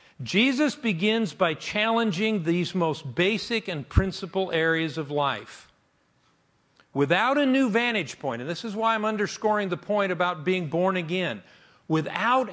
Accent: American